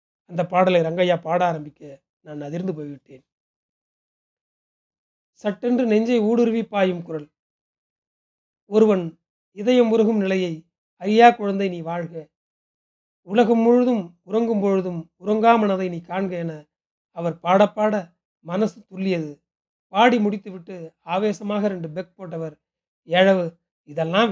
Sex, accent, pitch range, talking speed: male, native, 170-215 Hz, 100 wpm